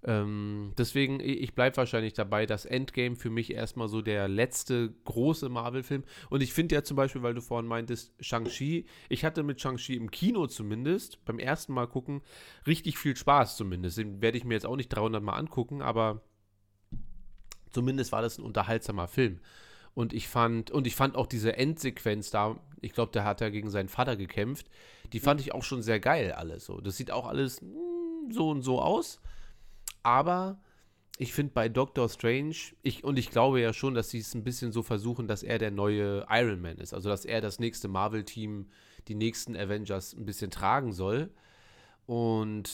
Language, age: German, 30-49